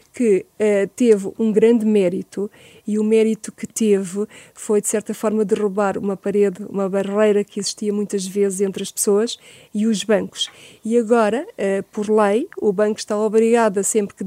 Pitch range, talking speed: 205-235 Hz, 170 wpm